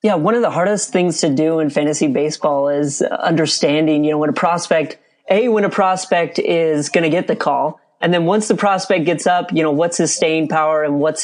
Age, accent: 30-49, American